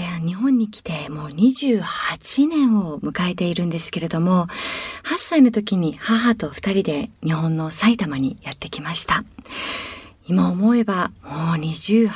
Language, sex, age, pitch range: Japanese, female, 40-59, 170-245 Hz